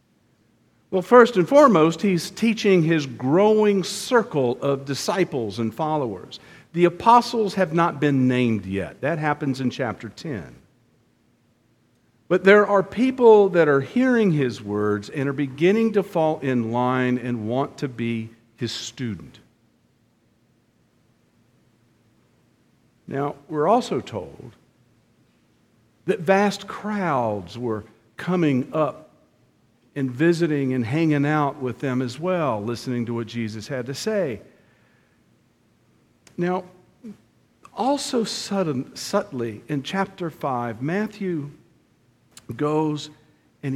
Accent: American